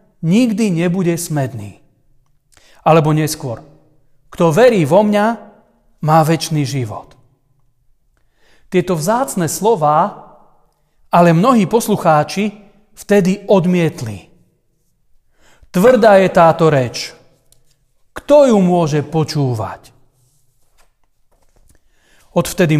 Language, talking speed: Slovak, 75 wpm